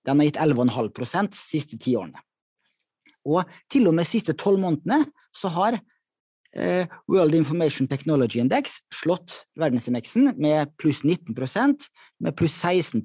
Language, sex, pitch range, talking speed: English, male, 130-185 Hz, 145 wpm